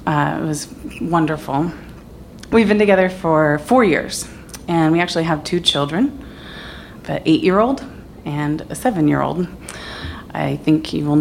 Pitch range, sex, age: 150-175 Hz, female, 30-49